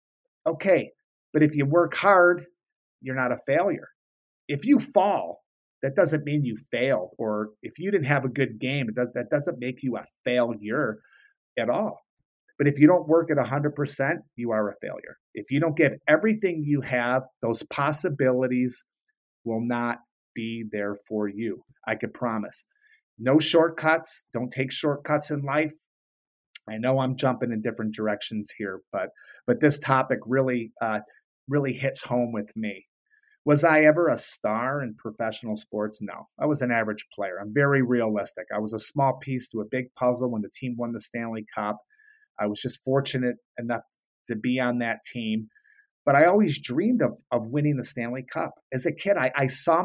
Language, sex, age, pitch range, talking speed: English, male, 30-49, 115-155 Hz, 180 wpm